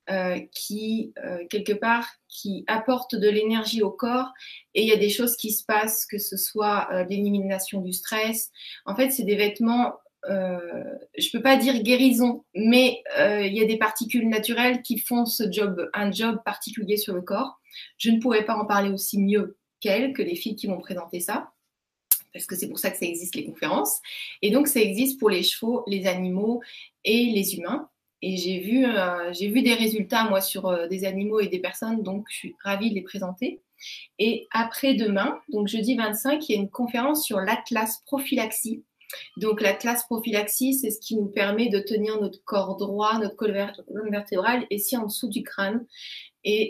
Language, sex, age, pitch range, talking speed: French, female, 20-39, 200-235 Hz, 195 wpm